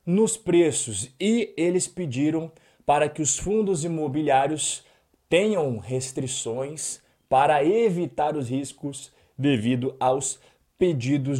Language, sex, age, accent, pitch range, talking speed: Portuguese, male, 20-39, Brazilian, 145-195 Hz, 100 wpm